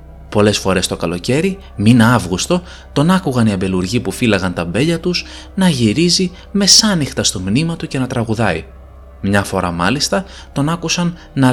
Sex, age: male, 20-39